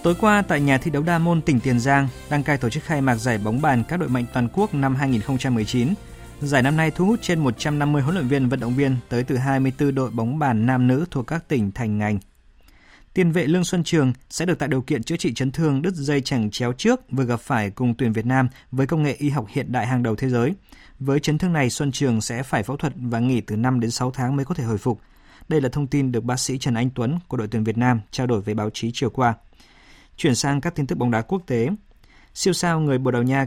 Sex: male